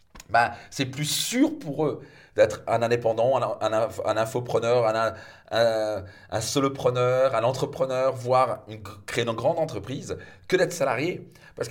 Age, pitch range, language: 30-49, 110-140 Hz, French